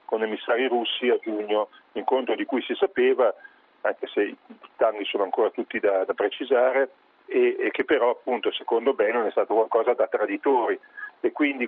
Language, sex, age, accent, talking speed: Italian, male, 40-59, native, 175 wpm